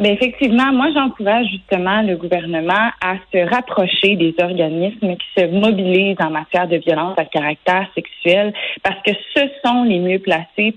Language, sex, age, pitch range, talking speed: French, female, 30-49, 175-210 Hz, 160 wpm